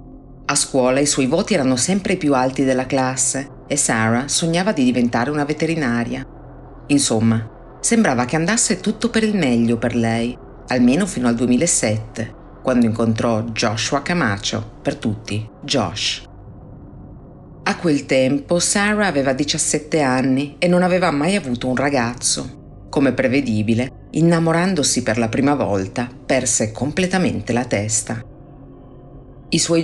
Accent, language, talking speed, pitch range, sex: native, Italian, 135 wpm, 125-155 Hz, female